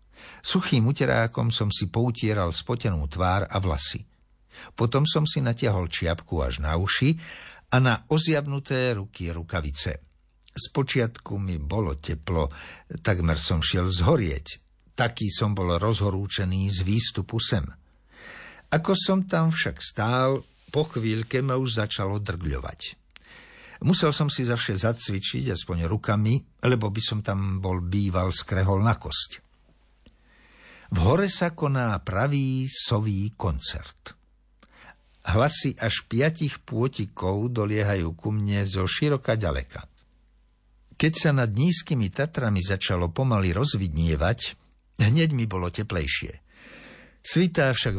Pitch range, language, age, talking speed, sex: 90-130 Hz, Slovak, 60-79, 120 wpm, male